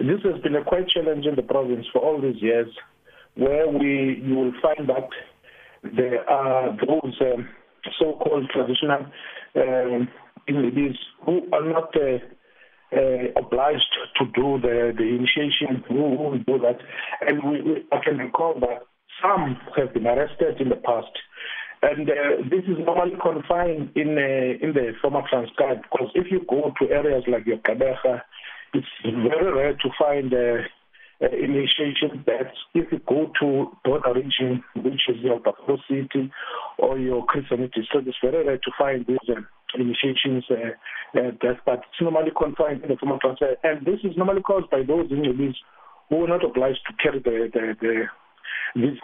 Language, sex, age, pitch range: English, male, 50-69, 125-155 Hz